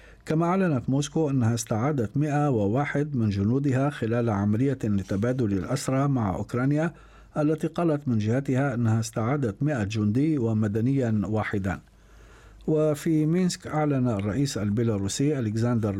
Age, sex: 50-69, male